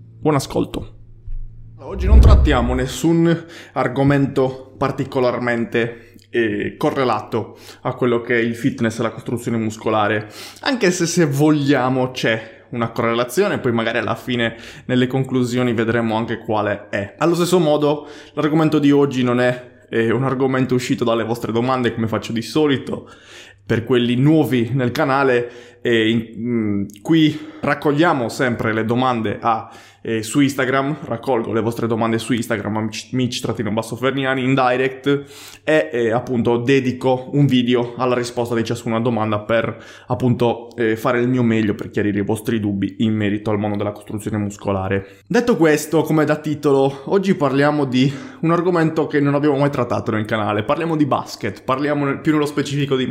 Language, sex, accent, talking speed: Italian, male, native, 155 wpm